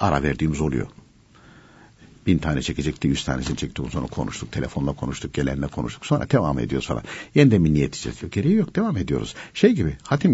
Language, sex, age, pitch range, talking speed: Turkish, male, 60-79, 70-105 Hz, 175 wpm